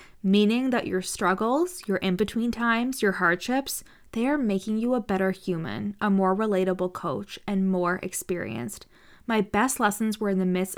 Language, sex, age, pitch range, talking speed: English, female, 20-39, 185-220 Hz, 165 wpm